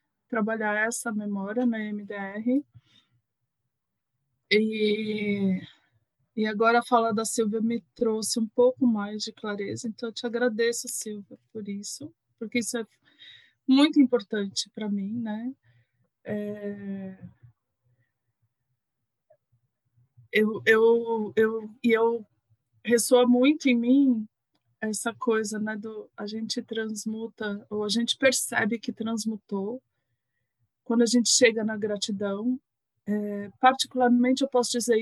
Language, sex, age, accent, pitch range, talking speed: Portuguese, female, 20-39, Brazilian, 185-235 Hz, 120 wpm